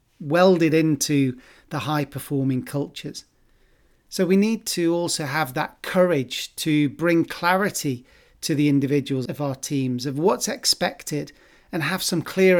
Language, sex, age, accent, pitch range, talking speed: English, male, 40-59, British, 140-175 Hz, 145 wpm